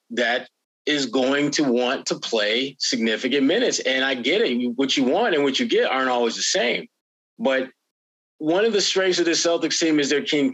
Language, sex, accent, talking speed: English, male, American, 200 wpm